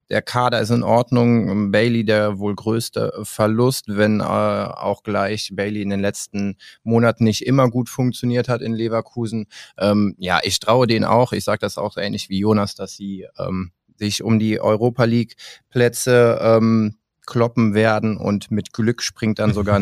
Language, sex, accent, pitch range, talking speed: German, male, German, 100-115 Hz, 175 wpm